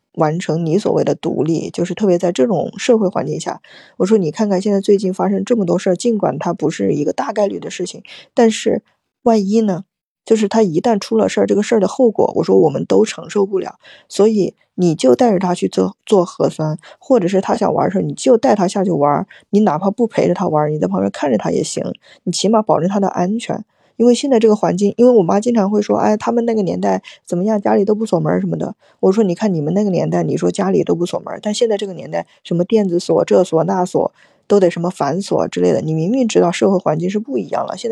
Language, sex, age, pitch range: Chinese, female, 20-39, 175-220 Hz